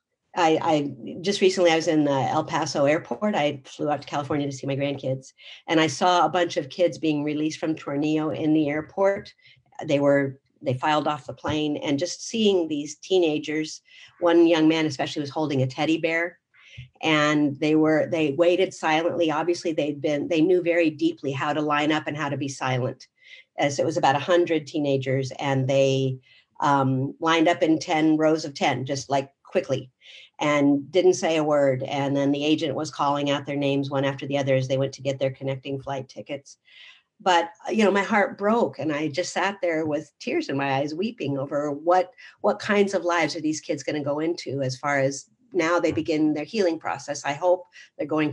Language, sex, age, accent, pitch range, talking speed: English, female, 50-69, American, 140-170 Hz, 205 wpm